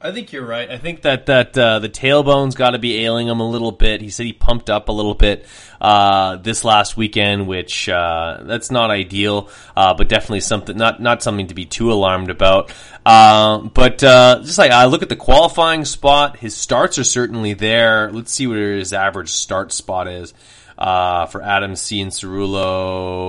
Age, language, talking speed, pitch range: 30-49, English, 200 wpm, 100-120 Hz